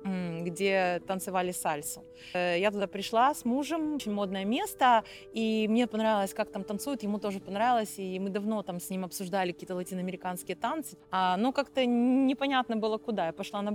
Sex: female